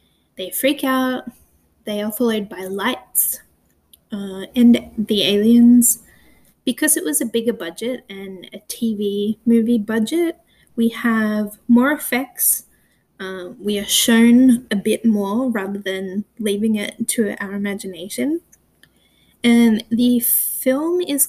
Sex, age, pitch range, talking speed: female, 20-39, 210-250 Hz, 125 wpm